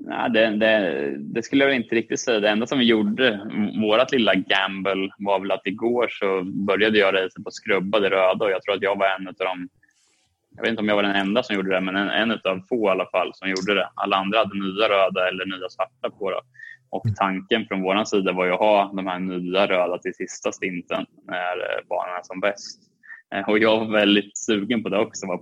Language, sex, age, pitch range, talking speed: Swedish, male, 20-39, 95-105 Hz, 240 wpm